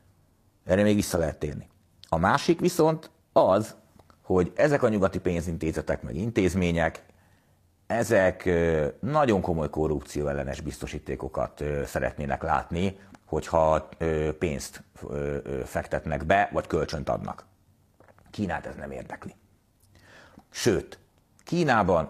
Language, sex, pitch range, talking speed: Hungarian, male, 75-100 Hz, 100 wpm